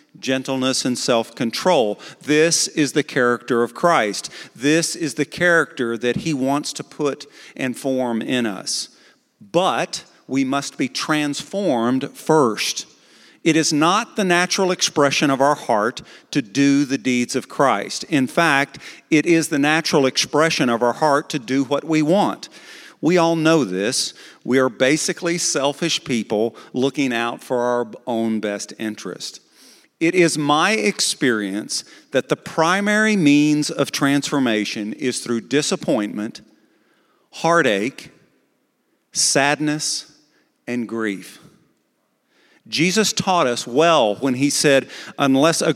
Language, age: English, 50-69